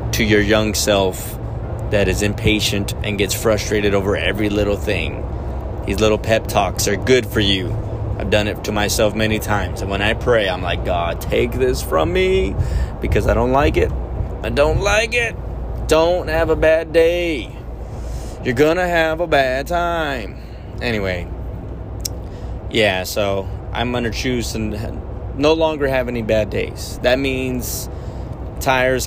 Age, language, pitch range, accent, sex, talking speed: 30-49, English, 100-125 Hz, American, male, 160 wpm